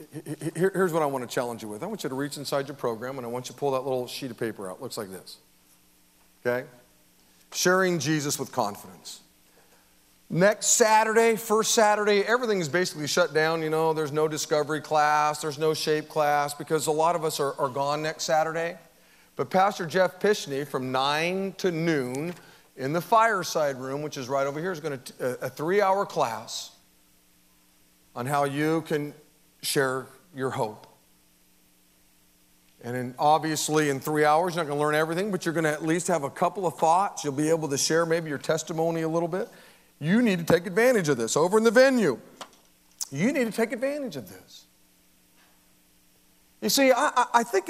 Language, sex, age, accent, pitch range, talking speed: English, male, 40-59, American, 125-180 Hz, 195 wpm